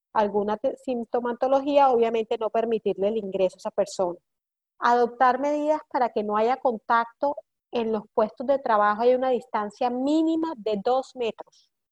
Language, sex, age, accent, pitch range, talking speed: Spanish, female, 40-59, American, 220-260 Hz, 145 wpm